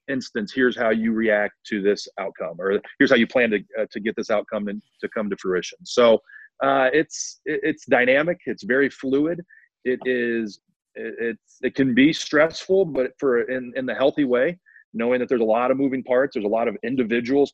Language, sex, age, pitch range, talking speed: English, male, 30-49, 110-135 Hz, 205 wpm